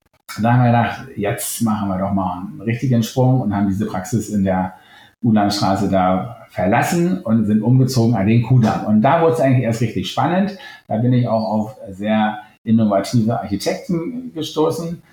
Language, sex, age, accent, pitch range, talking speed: German, male, 50-69, German, 105-135 Hz, 175 wpm